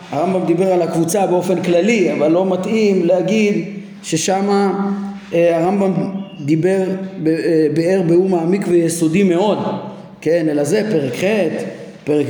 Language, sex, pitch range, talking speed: Hebrew, male, 165-210 Hz, 115 wpm